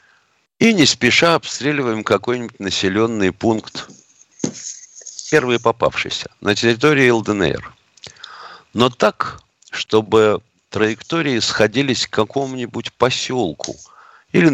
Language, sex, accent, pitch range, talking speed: Russian, male, native, 100-135 Hz, 85 wpm